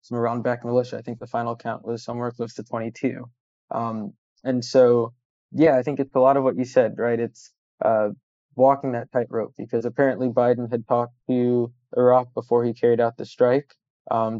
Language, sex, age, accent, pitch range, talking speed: English, male, 20-39, American, 120-130 Hz, 190 wpm